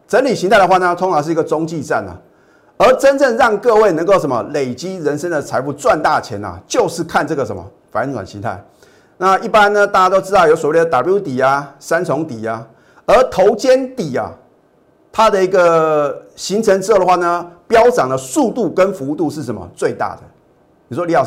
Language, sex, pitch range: Chinese, male, 135-185 Hz